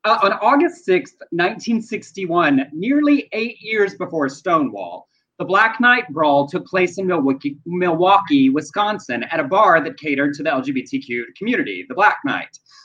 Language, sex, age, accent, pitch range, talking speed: English, male, 30-49, American, 160-265 Hz, 145 wpm